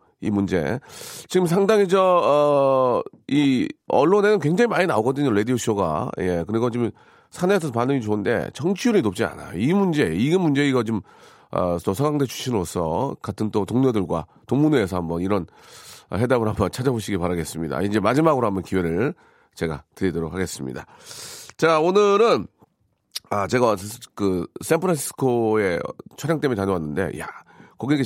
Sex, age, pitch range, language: male, 40-59, 100-160 Hz, Korean